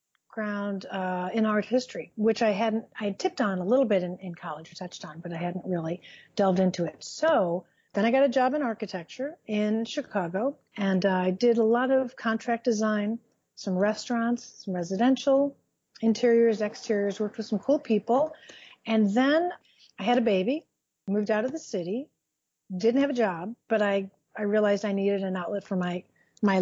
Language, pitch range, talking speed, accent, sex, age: English, 195-240 Hz, 185 wpm, American, female, 40-59